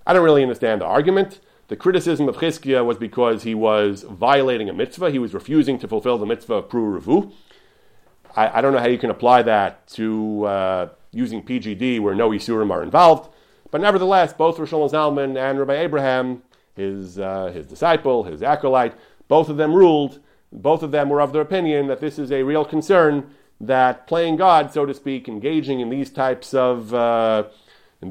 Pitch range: 110-150 Hz